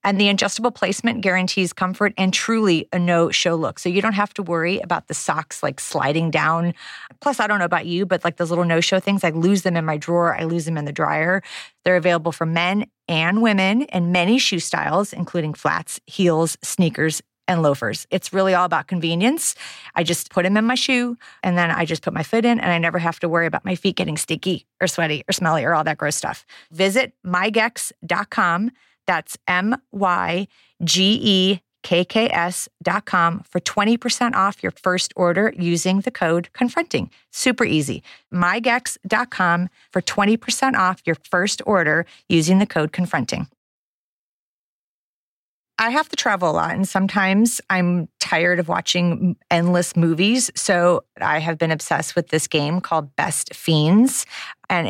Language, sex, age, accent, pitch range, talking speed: English, female, 40-59, American, 165-200 Hz, 170 wpm